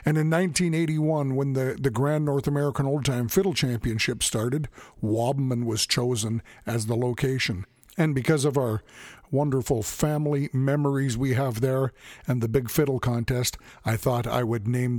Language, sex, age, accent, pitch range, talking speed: English, male, 50-69, American, 115-140 Hz, 160 wpm